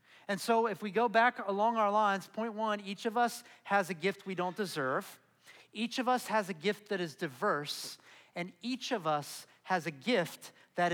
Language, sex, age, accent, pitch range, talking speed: English, male, 40-59, American, 170-220 Hz, 205 wpm